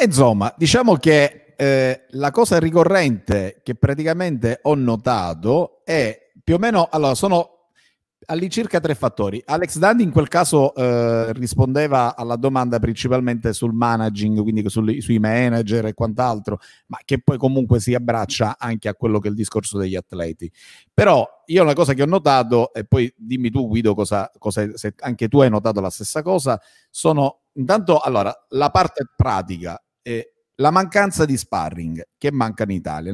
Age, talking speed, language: 50-69, 165 wpm, Italian